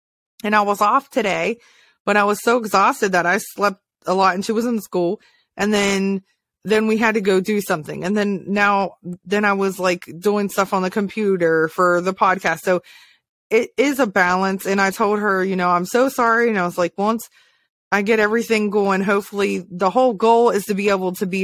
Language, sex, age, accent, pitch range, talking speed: English, female, 20-39, American, 185-225 Hz, 215 wpm